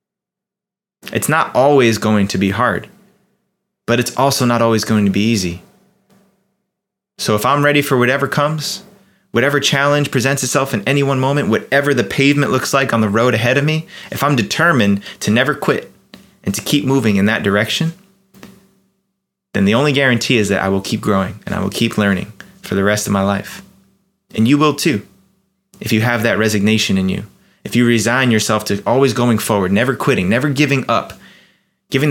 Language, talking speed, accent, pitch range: English, 190 wpm, American, 110-165 Hz